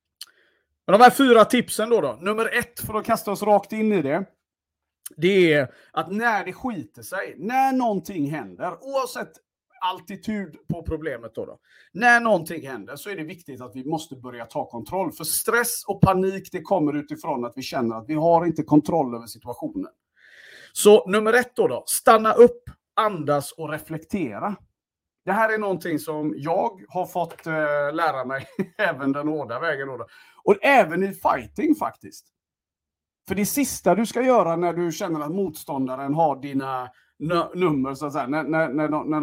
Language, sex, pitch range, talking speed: Swedish, male, 145-210 Hz, 175 wpm